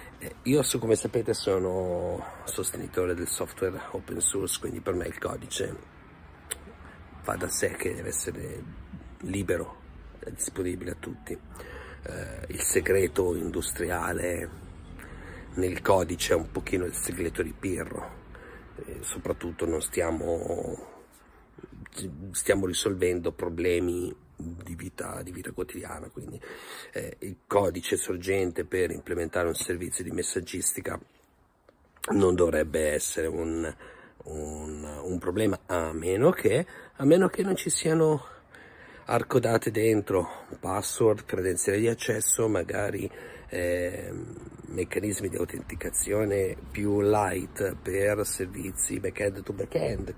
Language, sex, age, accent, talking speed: Italian, male, 50-69, native, 115 wpm